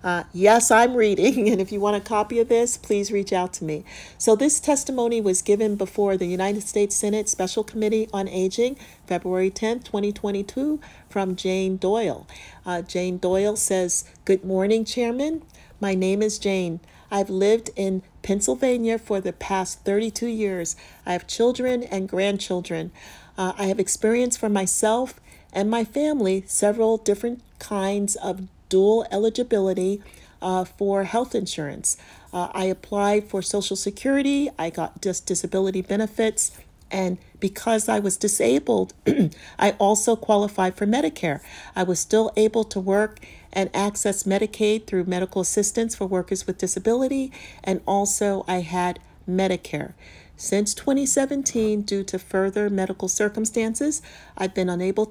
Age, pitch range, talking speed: 40-59, 190-220 Hz, 145 wpm